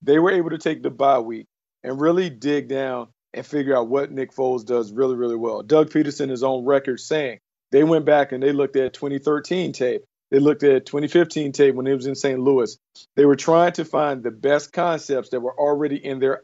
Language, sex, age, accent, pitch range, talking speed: English, male, 40-59, American, 135-165 Hz, 225 wpm